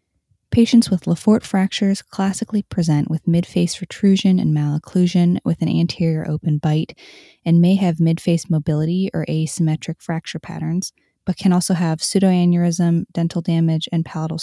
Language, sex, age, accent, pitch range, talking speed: English, female, 20-39, American, 160-185 Hz, 140 wpm